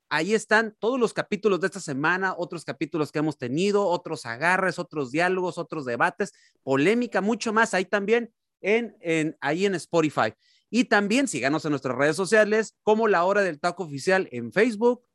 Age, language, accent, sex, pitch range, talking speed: 40-59, Spanish, Mexican, male, 155-215 Hz, 165 wpm